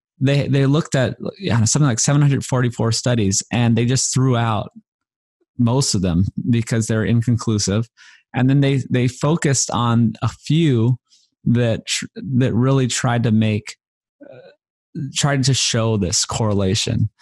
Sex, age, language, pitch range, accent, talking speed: male, 20-39, English, 105-130 Hz, American, 145 wpm